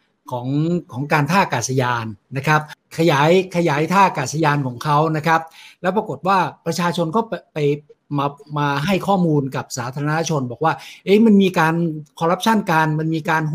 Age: 60-79